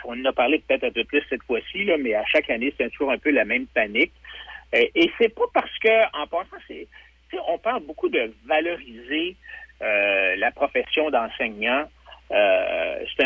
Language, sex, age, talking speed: French, male, 60-79, 185 wpm